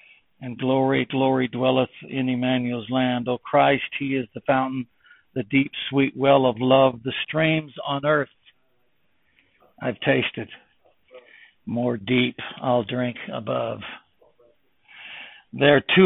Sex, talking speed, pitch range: male, 120 wpm, 115-130 Hz